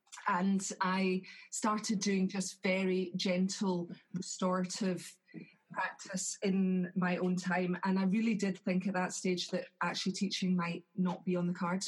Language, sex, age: English, female, 30-49